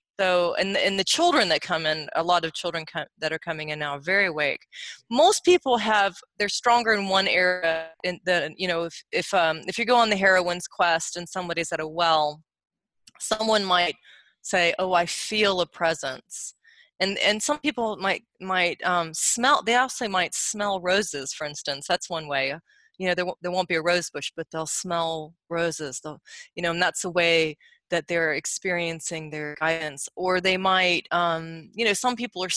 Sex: female